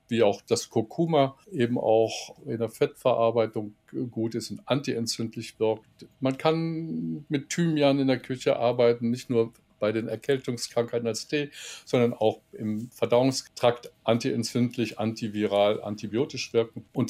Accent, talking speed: German, 135 wpm